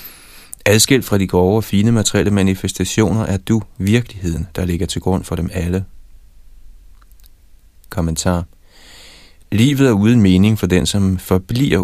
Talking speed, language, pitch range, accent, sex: 135 wpm, Danish, 85-100 Hz, native, male